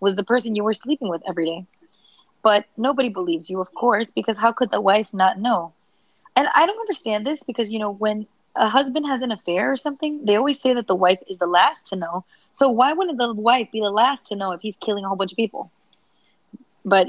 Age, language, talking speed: 20-39, English, 240 wpm